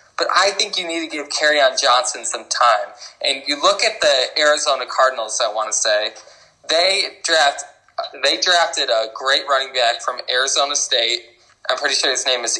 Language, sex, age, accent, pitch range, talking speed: English, male, 20-39, American, 130-185 Hz, 185 wpm